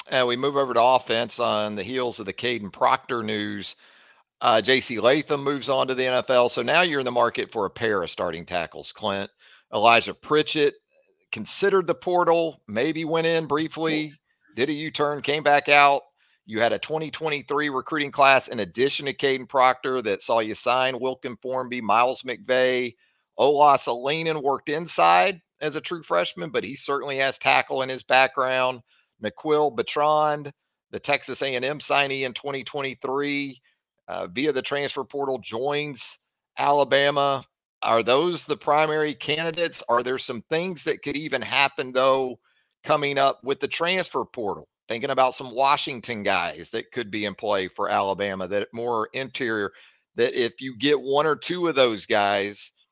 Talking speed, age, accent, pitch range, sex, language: 165 wpm, 40-59, American, 125-150 Hz, male, English